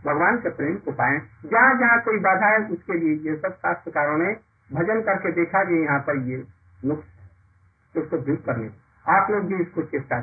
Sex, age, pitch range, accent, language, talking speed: male, 60-79, 115-185 Hz, native, Hindi, 180 wpm